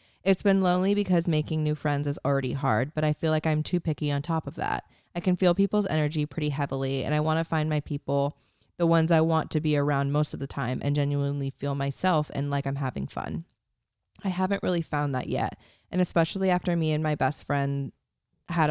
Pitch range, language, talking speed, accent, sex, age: 140-165 Hz, English, 225 wpm, American, female, 20-39